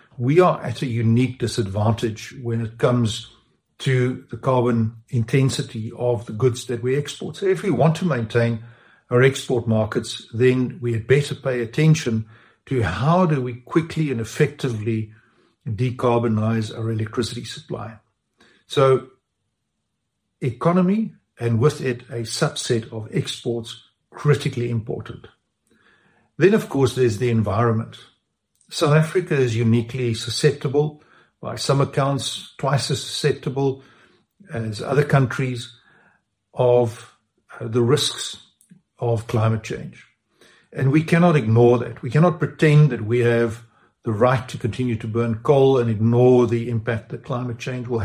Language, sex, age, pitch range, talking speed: English, male, 60-79, 115-140 Hz, 135 wpm